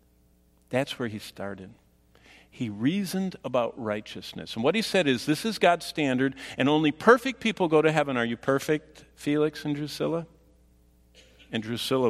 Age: 50-69